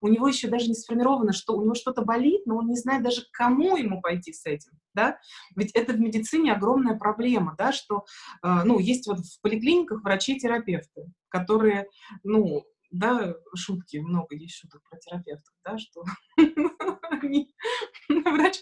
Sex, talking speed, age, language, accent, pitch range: female, 160 wpm, 20-39, Russian, native, 180-235 Hz